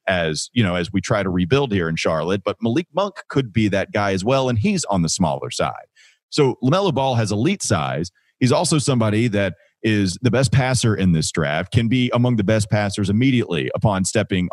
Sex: male